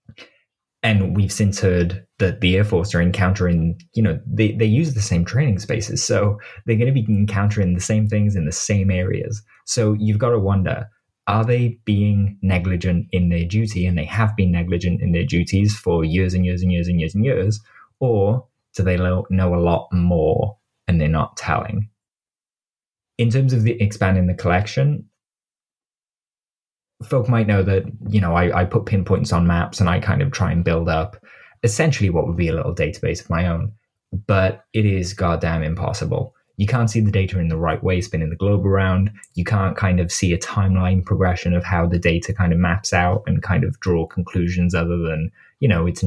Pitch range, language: 85-110 Hz, English